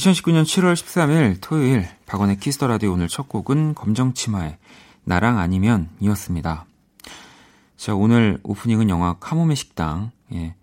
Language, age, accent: Korean, 40-59, native